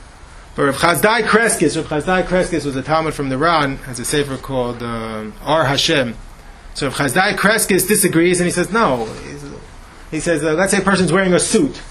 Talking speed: 170 wpm